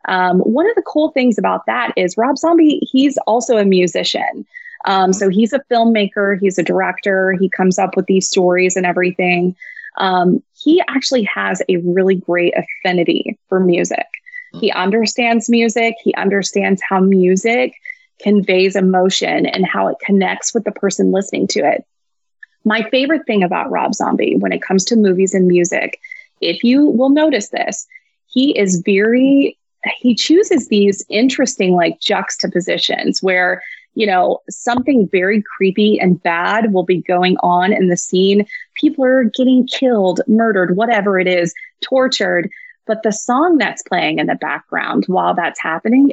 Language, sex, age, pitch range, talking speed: English, female, 20-39, 190-260 Hz, 160 wpm